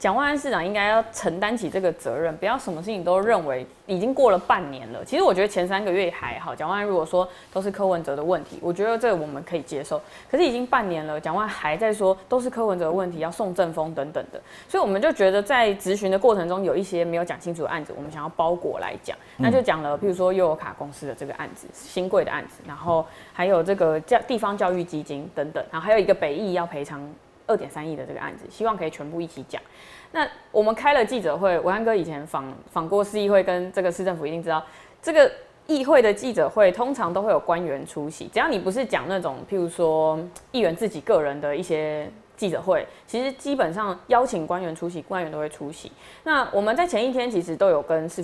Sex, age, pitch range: female, 20-39, 155-210 Hz